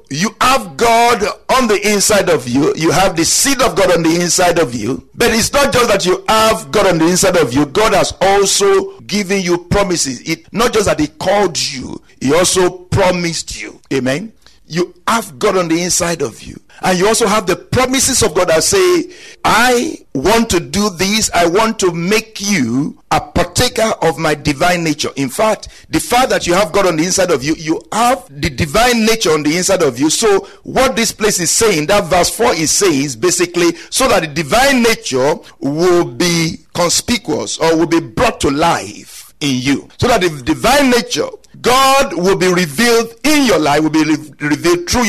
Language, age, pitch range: English, 50-69, 170-235 Hz